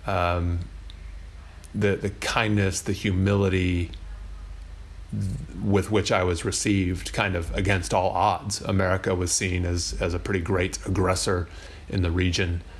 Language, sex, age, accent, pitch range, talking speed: English, male, 30-49, American, 80-100 Hz, 130 wpm